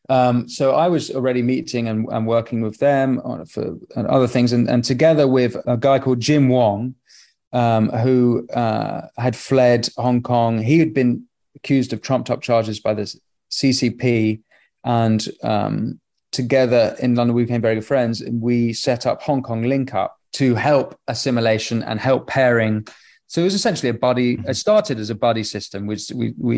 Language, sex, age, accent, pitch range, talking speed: English, male, 30-49, British, 115-130 Hz, 175 wpm